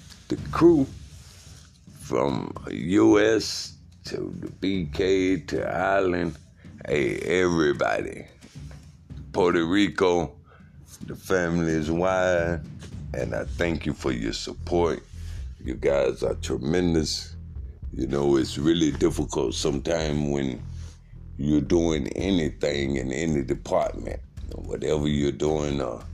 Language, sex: English, male